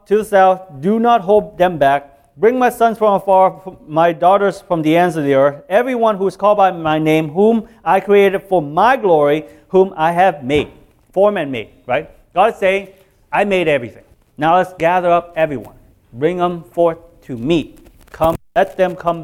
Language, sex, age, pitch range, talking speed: English, male, 30-49, 120-185 Hz, 195 wpm